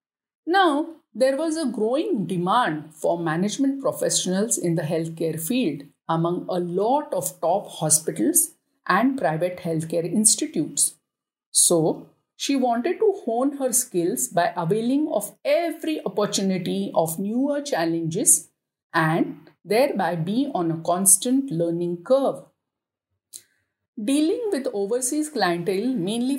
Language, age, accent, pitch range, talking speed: English, 50-69, Indian, 170-265 Hz, 115 wpm